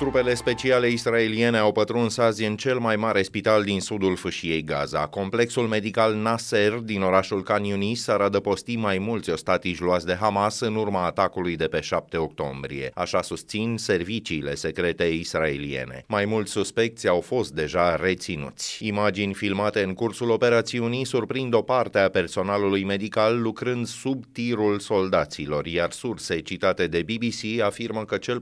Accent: native